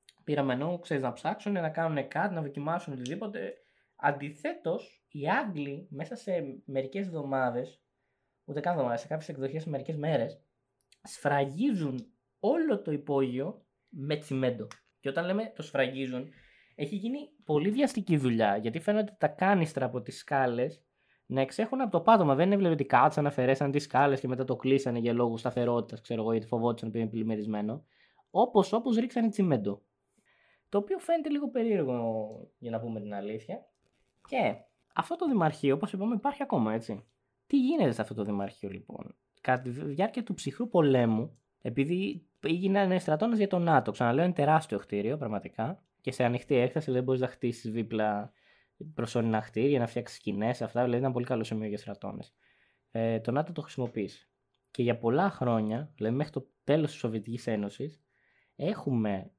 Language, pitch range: English, 120-170 Hz